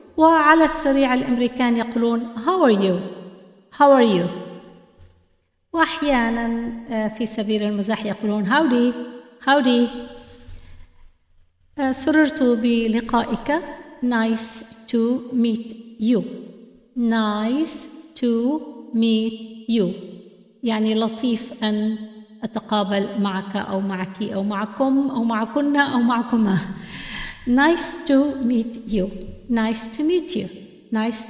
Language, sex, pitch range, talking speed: Arabic, female, 210-260 Hz, 95 wpm